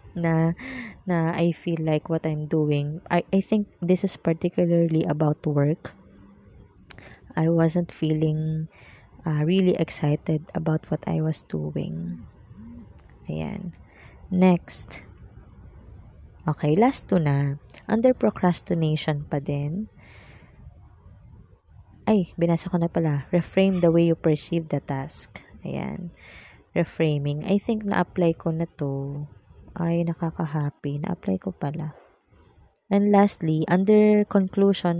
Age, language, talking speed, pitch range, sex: 20-39, Filipino, 115 wpm, 145-180 Hz, female